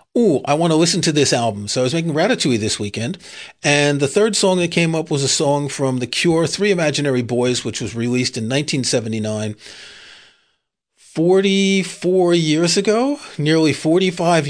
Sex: male